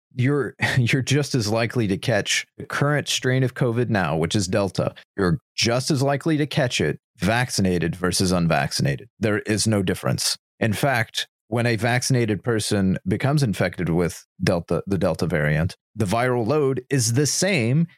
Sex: male